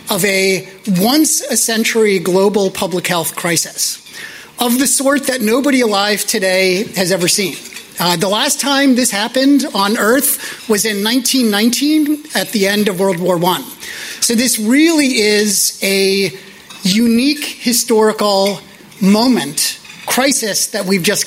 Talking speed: 135 wpm